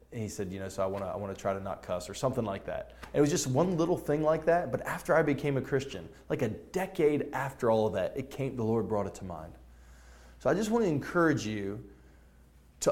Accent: American